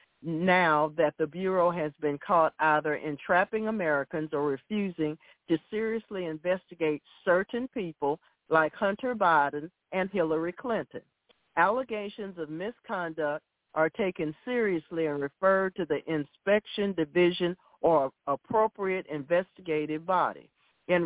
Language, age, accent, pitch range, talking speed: English, 50-69, American, 150-195 Hz, 115 wpm